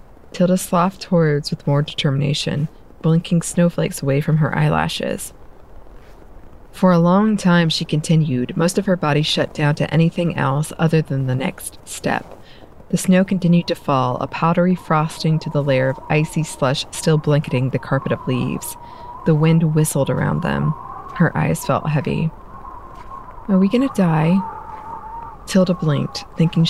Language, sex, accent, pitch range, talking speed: English, female, American, 140-170 Hz, 155 wpm